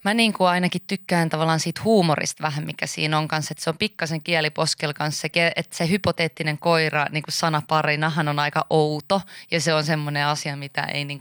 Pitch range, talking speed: 145-165 Hz, 195 wpm